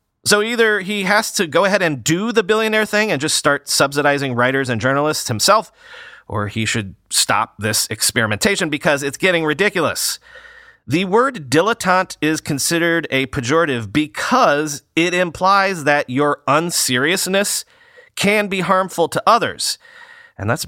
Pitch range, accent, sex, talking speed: 120-195 Hz, American, male, 145 wpm